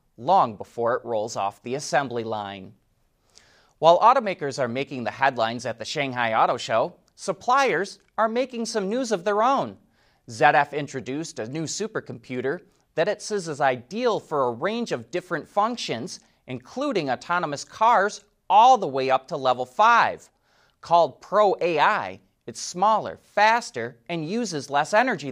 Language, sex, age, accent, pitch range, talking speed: English, male, 30-49, American, 125-195 Hz, 150 wpm